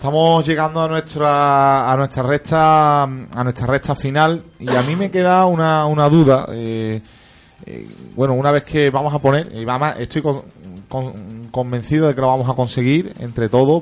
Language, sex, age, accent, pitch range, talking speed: Spanish, male, 30-49, Spanish, 120-145 Hz, 175 wpm